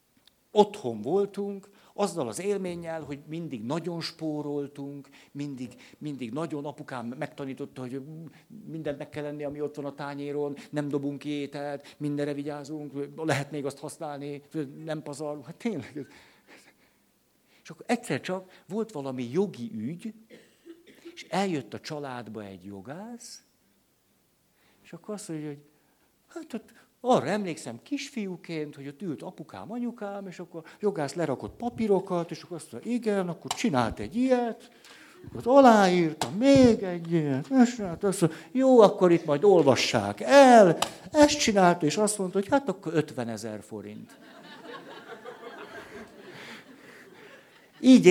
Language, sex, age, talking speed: Hungarian, male, 60-79, 135 wpm